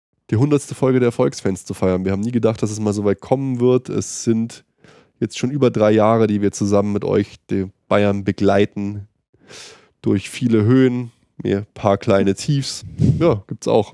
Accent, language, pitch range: German, German, 100-115 Hz